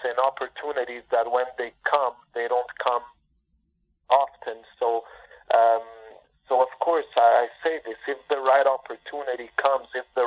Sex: male